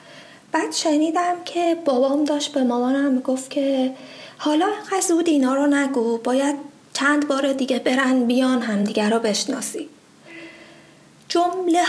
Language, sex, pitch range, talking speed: Persian, female, 240-300 Hz, 130 wpm